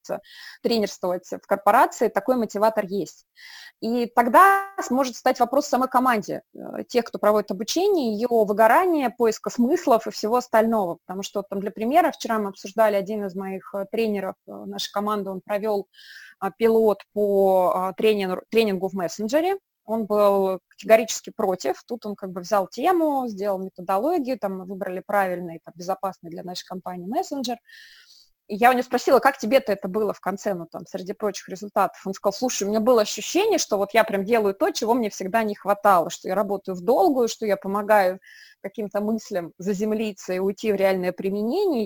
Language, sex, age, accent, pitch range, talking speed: Russian, female, 20-39, native, 195-240 Hz, 165 wpm